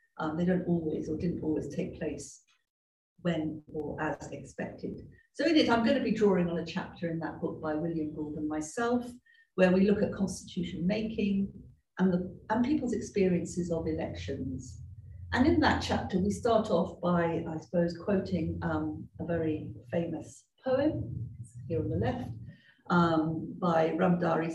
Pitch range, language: 160-205 Hz, English